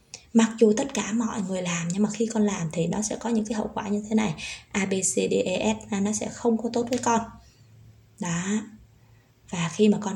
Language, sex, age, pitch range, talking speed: Vietnamese, female, 20-39, 195-225 Hz, 240 wpm